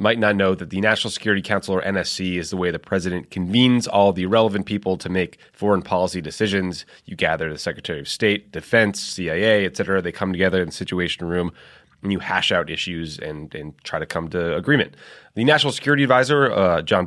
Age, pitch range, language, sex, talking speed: 20-39, 90-110 Hz, English, male, 210 wpm